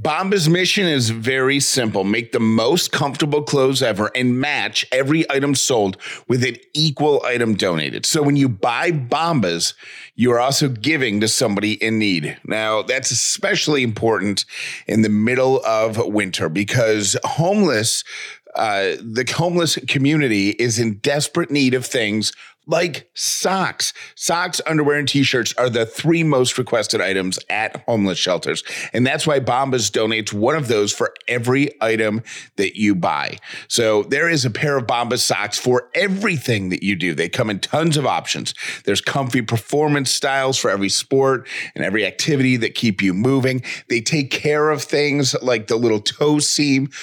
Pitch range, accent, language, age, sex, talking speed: 110-145 Hz, American, English, 30-49, male, 160 wpm